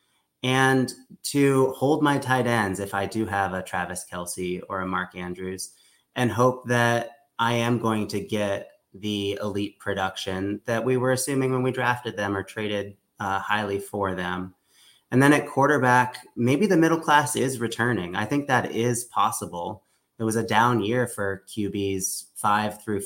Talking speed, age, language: 170 wpm, 30-49, English